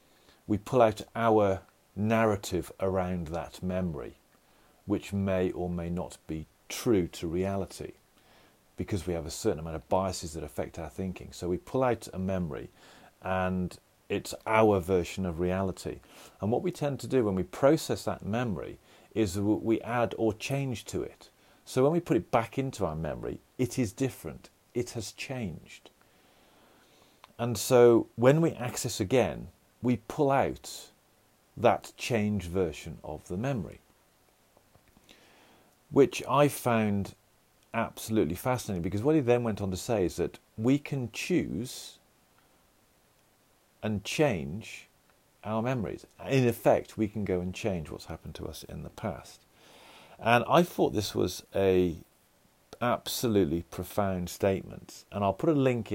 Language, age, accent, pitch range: English, 40-59, British, 90-120 Hz